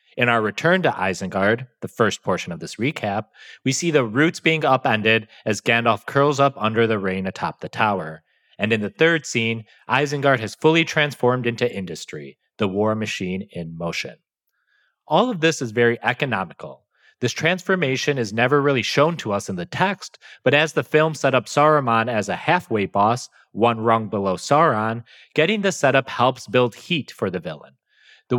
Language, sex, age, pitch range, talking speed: English, male, 30-49, 110-145 Hz, 180 wpm